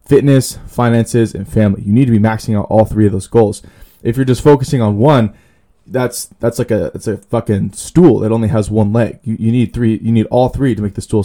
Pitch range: 105-125 Hz